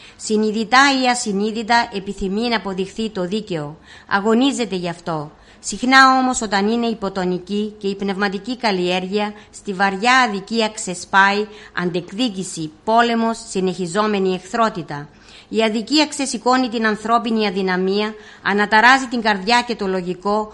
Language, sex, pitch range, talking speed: Greek, female, 195-235 Hz, 115 wpm